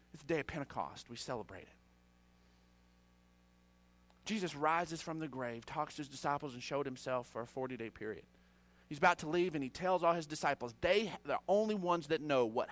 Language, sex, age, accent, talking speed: English, male, 40-59, American, 195 wpm